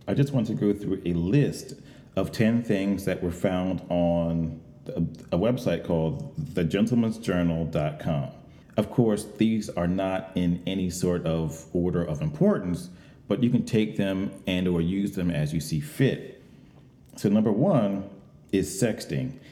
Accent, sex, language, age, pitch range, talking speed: American, male, English, 40-59, 90-135 Hz, 150 wpm